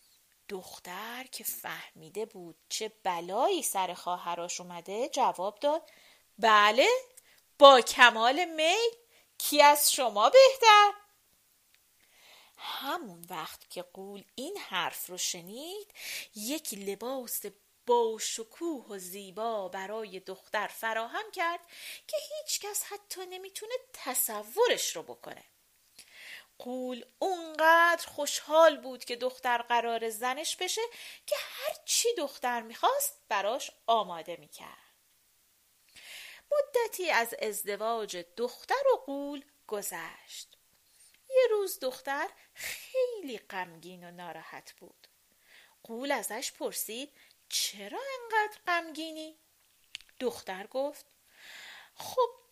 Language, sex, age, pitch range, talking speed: Persian, female, 30-49, 220-360 Hz, 95 wpm